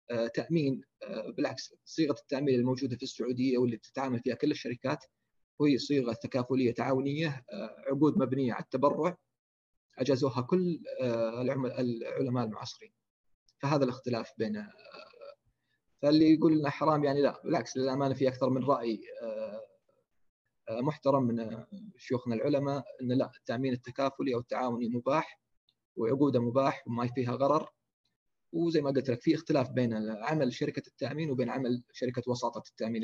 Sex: male